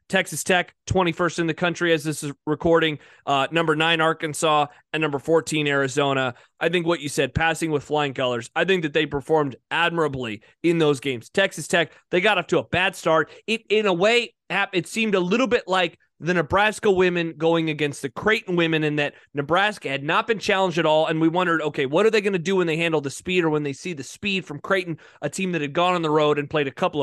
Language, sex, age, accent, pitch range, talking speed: English, male, 30-49, American, 150-185 Hz, 235 wpm